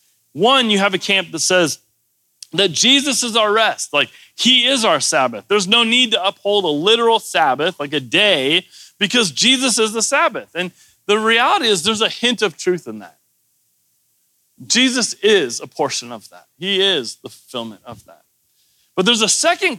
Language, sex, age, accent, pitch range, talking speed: English, male, 30-49, American, 170-240 Hz, 180 wpm